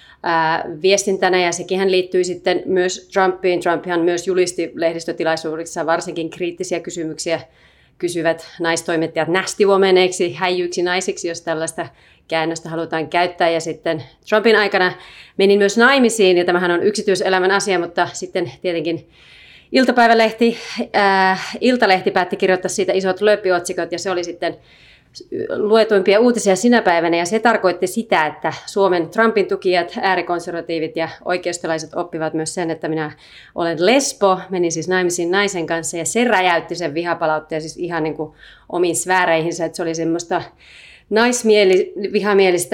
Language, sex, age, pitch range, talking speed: Finnish, female, 30-49, 165-190 Hz, 135 wpm